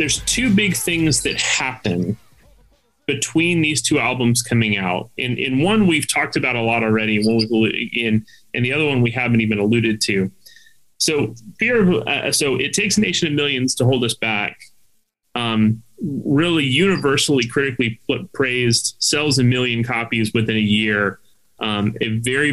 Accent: American